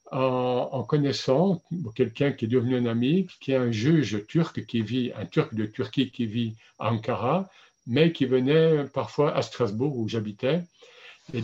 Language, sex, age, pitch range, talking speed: French, male, 60-79, 120-160 Hz, 170 wpm